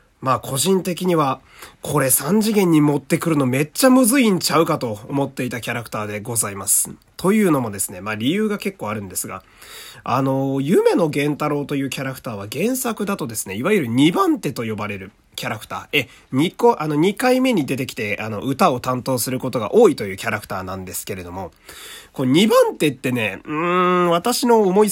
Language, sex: Japanese, male